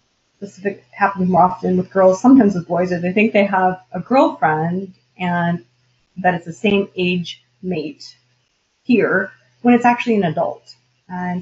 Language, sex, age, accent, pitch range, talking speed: English, female, 30-49, American, 165-210 Hz, 160 wpm